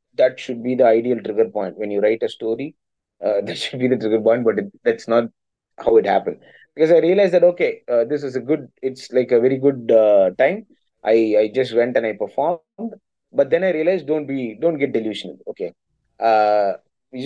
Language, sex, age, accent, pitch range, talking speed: English, male, 20-39, Indian, 115-165 Hz, 215 wpm